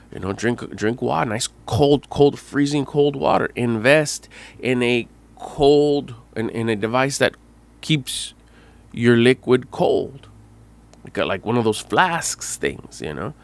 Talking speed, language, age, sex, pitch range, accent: 150 wpm, English, 20-39, male, 105-140 Hz, American